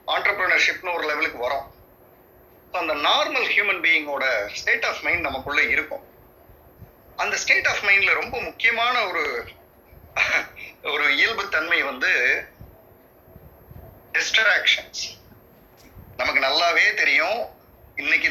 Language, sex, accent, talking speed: Tamil, male, native, 90 wpm